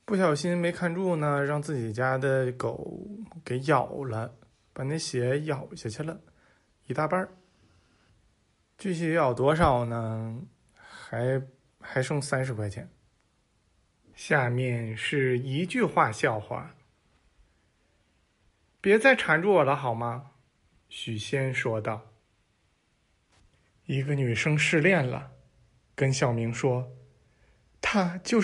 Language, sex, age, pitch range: Chinese, male, 20-39, 120-165 Hz